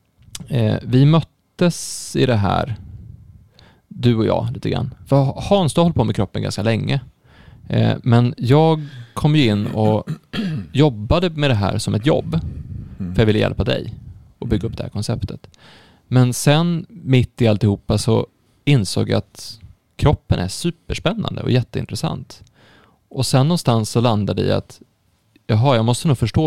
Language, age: Swedish, 20-39